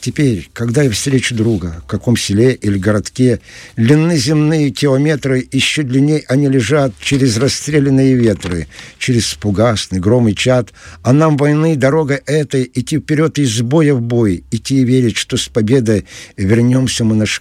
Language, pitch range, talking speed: Russian, 110-140 Hz, 155 wpm